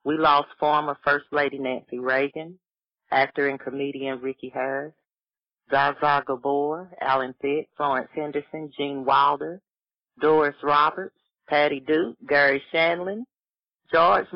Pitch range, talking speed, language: 135-175 Hz, 115 wpm, English